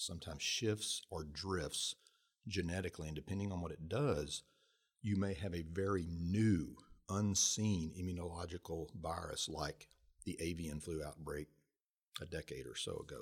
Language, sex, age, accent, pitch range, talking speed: English, male, 50-69, American, 80-100 Hz, 135 wpm